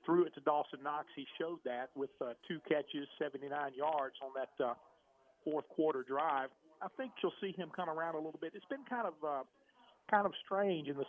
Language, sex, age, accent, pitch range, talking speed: English, male, 40-59, American, 140-175 Hz, 215 wpm